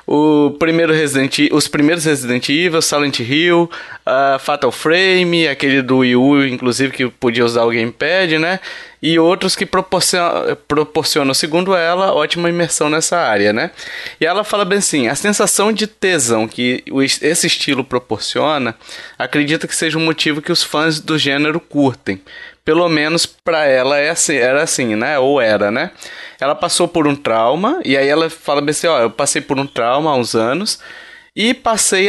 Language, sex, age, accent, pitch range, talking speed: Portuguese, male, 20-39, Brazilian, 125-175 Hz, 170 wpm